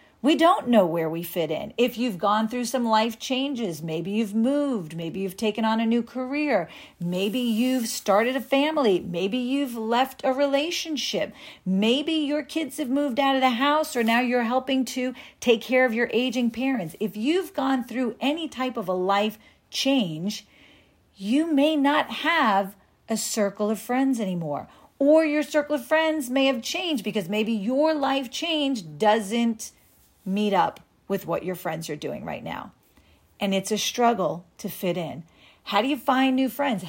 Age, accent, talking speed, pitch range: 40-59, American, 180 wpm, 200-270 Hz